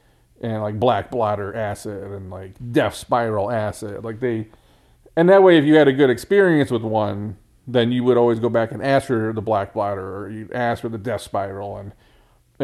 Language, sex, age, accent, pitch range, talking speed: English, male, 40-59, American, 110-145 Hz, 210 wpm